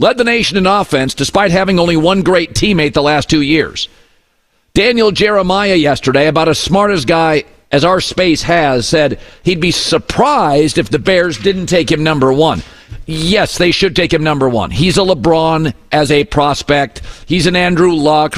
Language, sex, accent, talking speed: English, male, American, 185 wpm